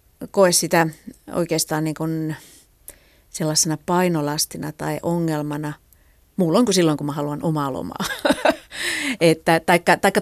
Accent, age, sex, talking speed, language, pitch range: native, 30-49, female, 110 wpm, Finnish, 155-195 Hz